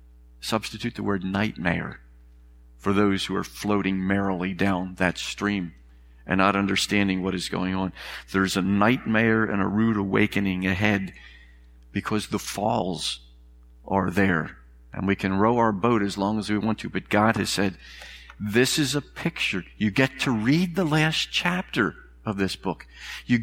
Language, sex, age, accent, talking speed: English, male, 50-69, American, 165 wpm